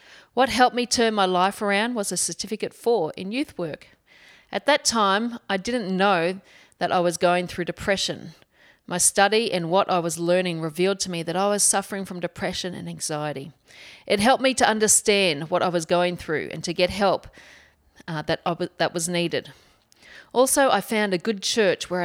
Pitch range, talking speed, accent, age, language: 170-210 Hz, 190 wpm, Australian, 40-59, English